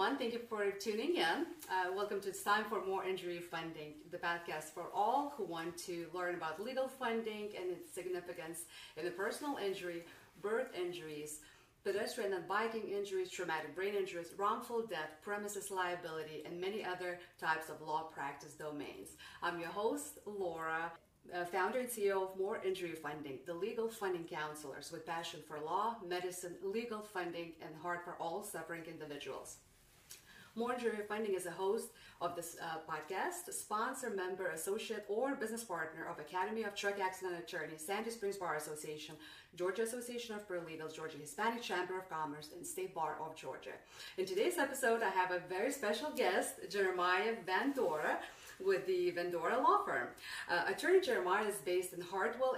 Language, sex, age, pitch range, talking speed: English, female, 30-49, 170-225 Hz, 165 wpm